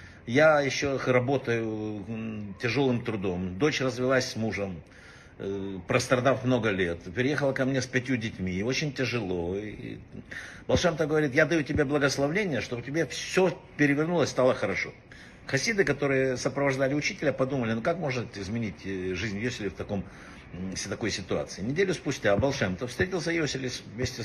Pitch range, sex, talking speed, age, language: 105-140 Hz, male, 140 wpm, 60-79, Russian